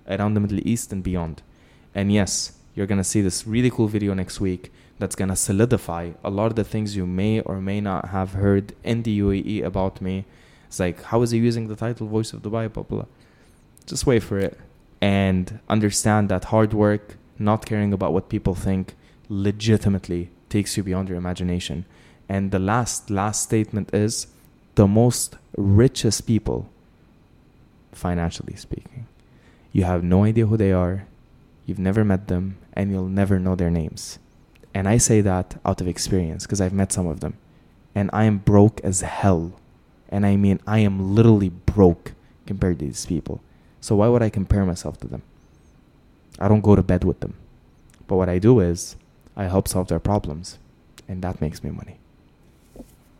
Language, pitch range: English, 90-105 Hz